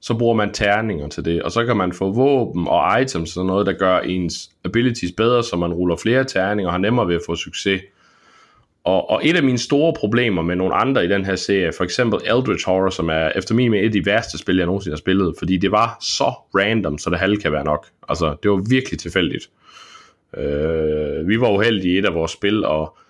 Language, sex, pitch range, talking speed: Danish, male, 90-120 Hz, 235 wpm